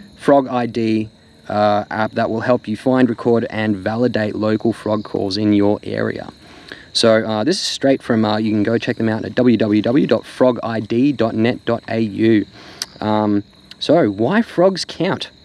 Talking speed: 150 wpm